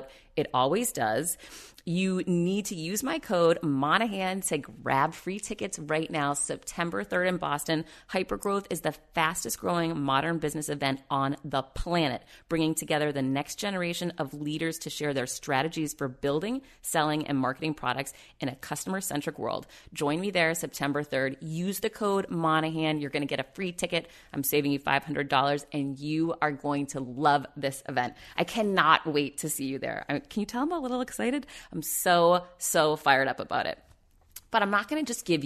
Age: 30-49